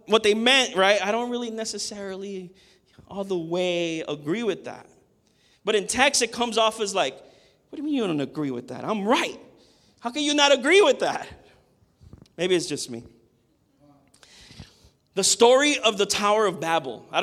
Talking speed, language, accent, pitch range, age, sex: 180 wpm, English, American, 195-320 Hz, 30-49, male